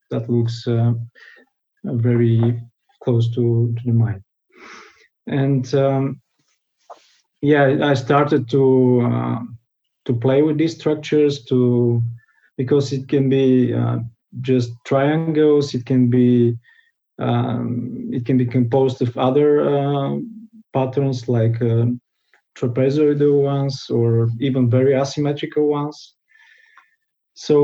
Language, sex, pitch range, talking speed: English, male, 120-145 Hz, 110 wpm